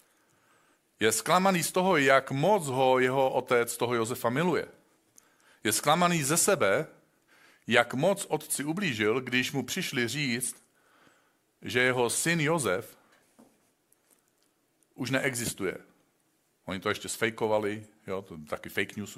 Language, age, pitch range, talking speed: Czech, 50-69, 100-140 Hz, 120 wpm